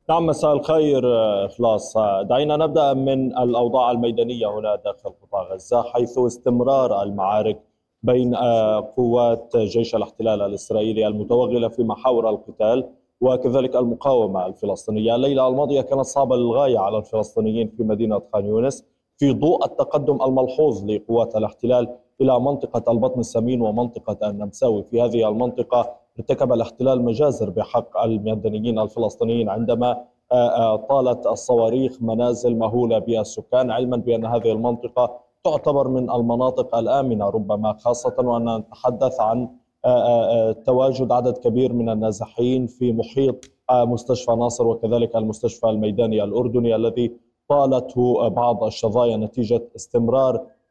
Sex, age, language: male, 20-39, Arabic